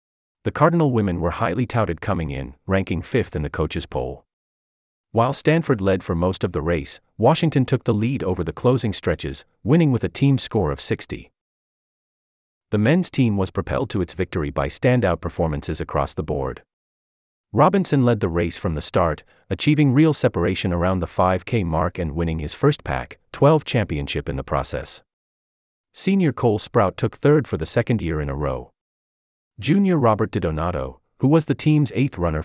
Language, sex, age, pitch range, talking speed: English, male, 30-49, 80-130 Hz, 180 wpm